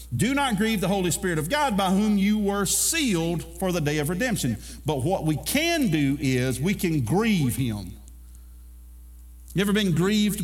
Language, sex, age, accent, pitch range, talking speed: English, male, 50-69, American, 115-185 Hz, 185 wpm